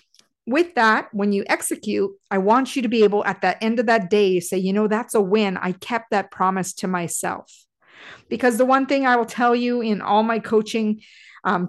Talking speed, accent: 215 wpm, American